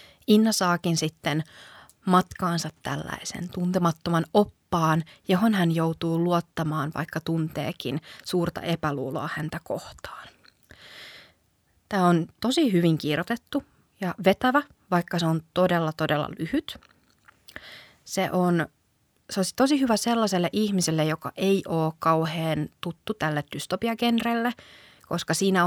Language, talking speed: Finnish, 110 wpm